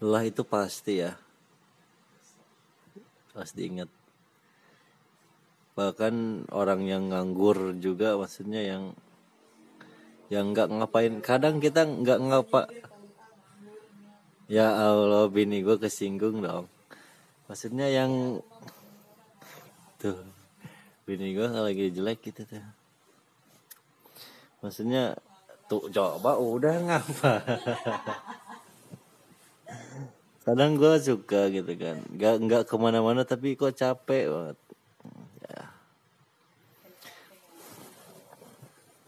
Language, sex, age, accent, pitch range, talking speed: Indonesian, male, 20-39, native, 95-130 Hz, 80 wpm